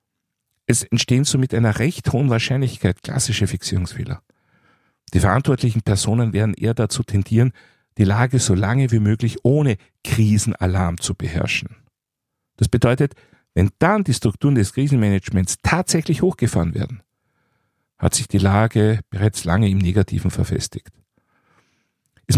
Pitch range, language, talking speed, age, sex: 95-130 Hz, German, 125 wpm, 50-69, male